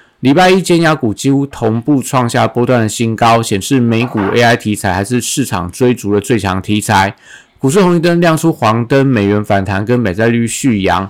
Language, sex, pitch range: Chinese, male, 105-130 Hz